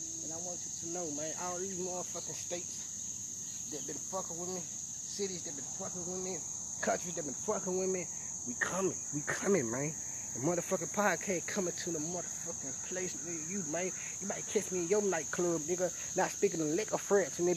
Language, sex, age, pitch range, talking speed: English, male, 20-39, 175-215 Hz, 200 wpm